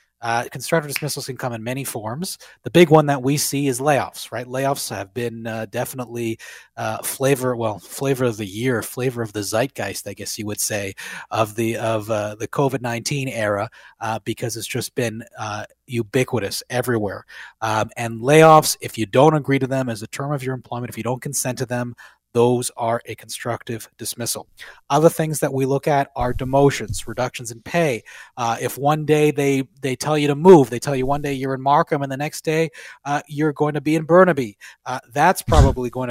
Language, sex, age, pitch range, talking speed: English, male, 30-49, 115-145 Hz, 205 wpm